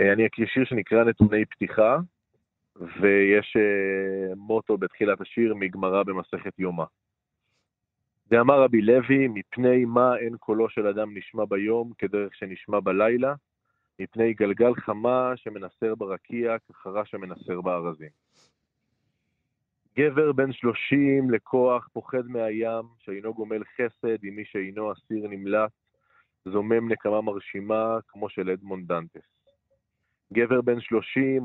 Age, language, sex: 30-49, Hebrew, male